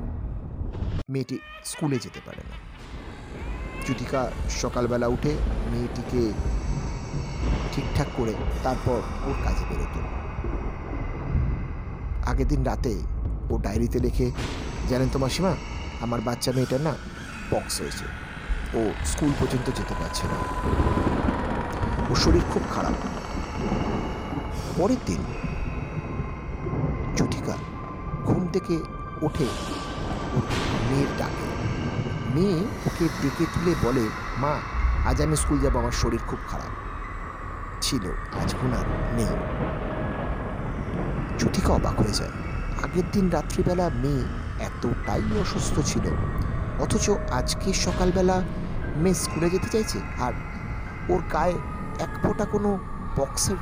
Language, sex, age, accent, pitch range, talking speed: Bengali, male, 50-69, native, 95-150 Hz, 75 wpm